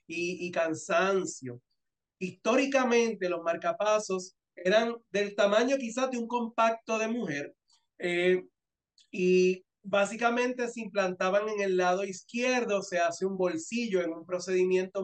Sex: male